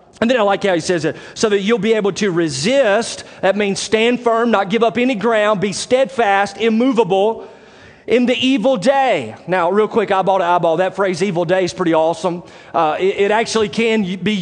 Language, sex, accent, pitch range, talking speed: English, male, American, 175-225 Hz, 210 wpm